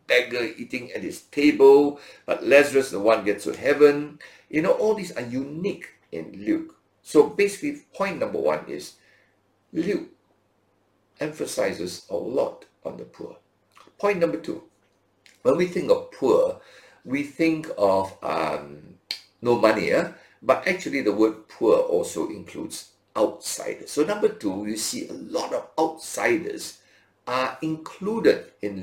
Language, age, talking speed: English, 60-79, 140 wpm